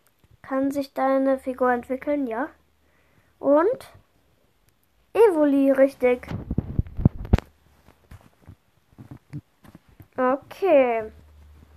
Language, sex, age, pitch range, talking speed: German, female, 10-29, 230-280 Hz, 50 wpm